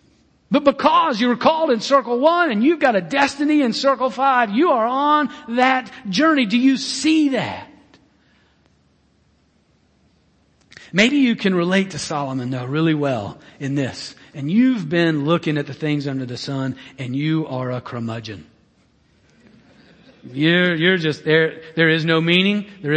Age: 40-59